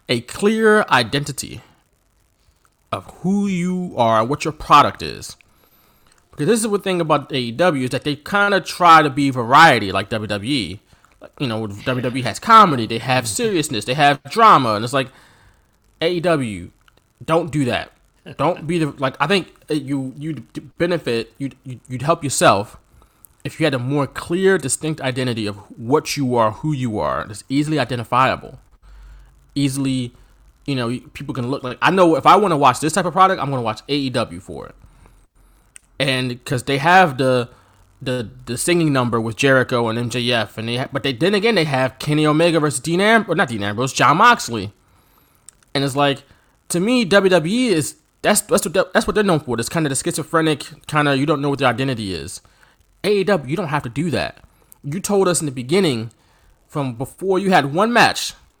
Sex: male